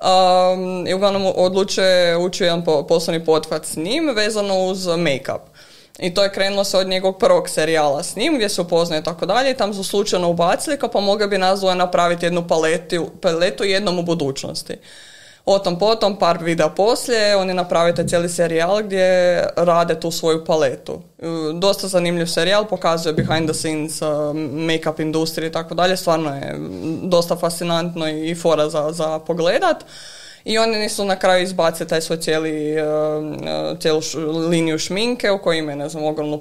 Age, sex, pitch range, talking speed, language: 20-39, female, 155-185 Hz, 170 wpm, Croatian